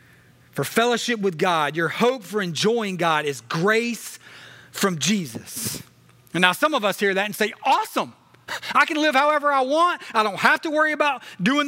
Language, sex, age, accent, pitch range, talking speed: English, male, 30-49, American, 170-245 Hz, 185 wpm